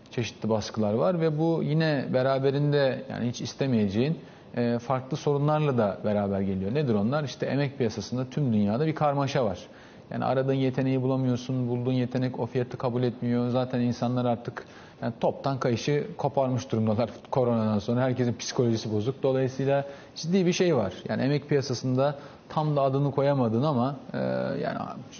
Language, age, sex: Turkish, 40-59, male